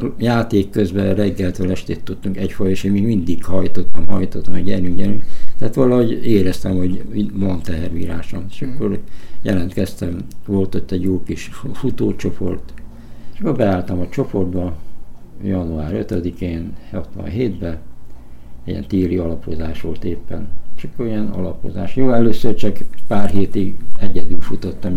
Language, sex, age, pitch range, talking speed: Hungarian, male, 60-79, 90-105 Hz, 125 wpm